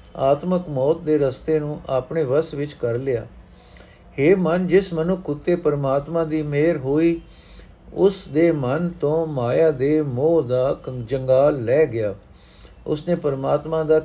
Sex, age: male, 60-79